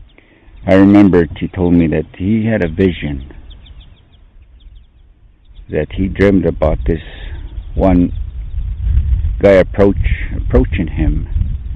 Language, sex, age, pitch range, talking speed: English, male, 60-79, 80-100 Hz, 105 wpm